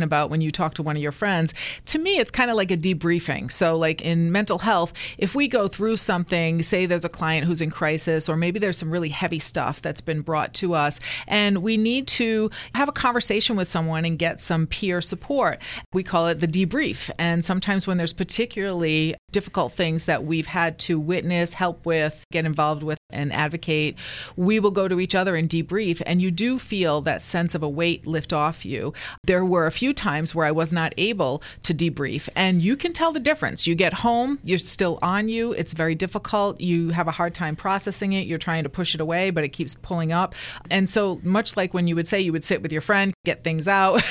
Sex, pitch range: female, 160-195 Hz